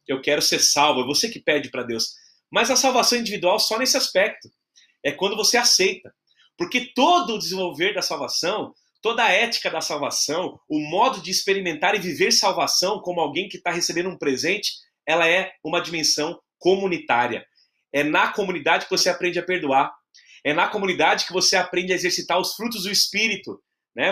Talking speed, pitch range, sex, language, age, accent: 180 wpm, 160-215 Hz, male, Portuguese, 30-49, Brazilian